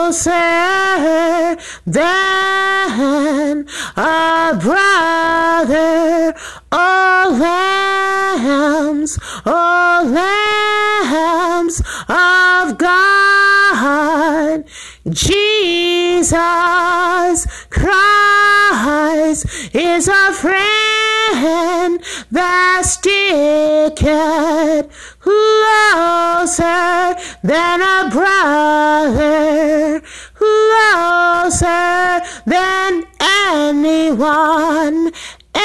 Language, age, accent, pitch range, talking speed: English, 30-49, American, 330-390 Hz, 40 wpm